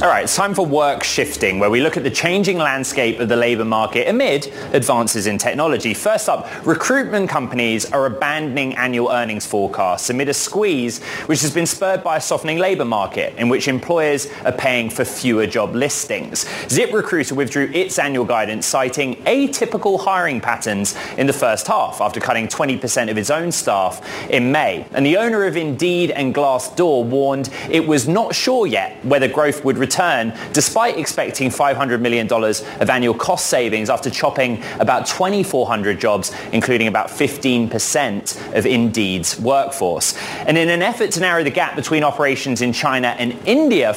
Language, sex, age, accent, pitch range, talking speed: English, male, 20-39, British, 120-170 Hz, 170 wpm